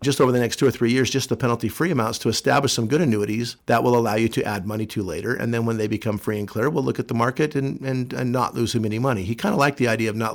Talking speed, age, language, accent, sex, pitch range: 320 wpm, 50-69, English, American, male, 105-125 Hz